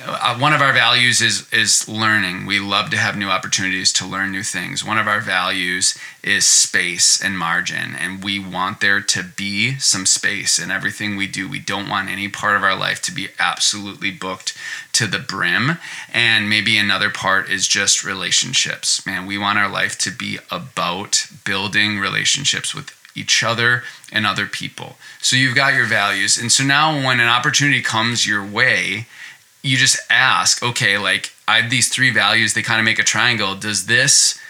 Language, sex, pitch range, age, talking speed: English, male, 100-130 Hz, 20-39, 185 wpm